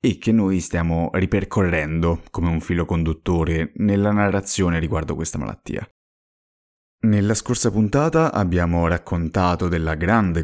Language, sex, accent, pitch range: Italian, male, native, 85-100 Hz